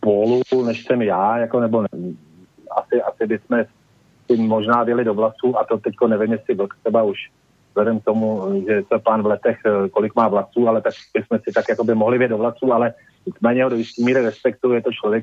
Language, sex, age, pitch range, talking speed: Slovak, male, 40-59, 110-130 Hz, 205 wpm